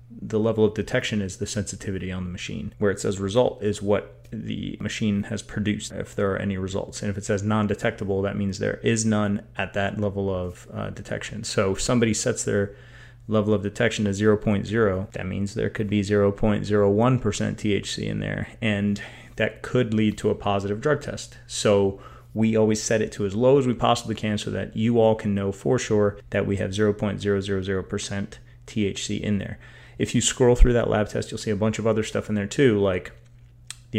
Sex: male